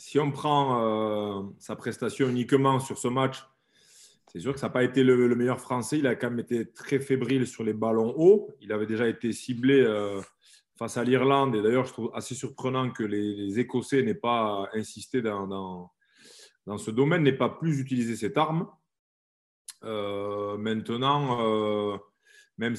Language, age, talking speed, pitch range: French, 30-49, 175 wpm, 105-130 Hz